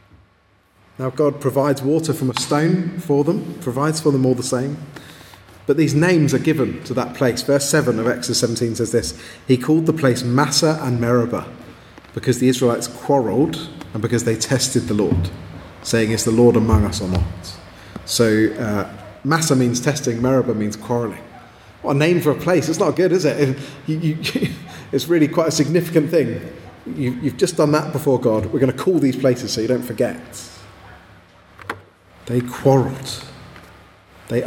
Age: 30-49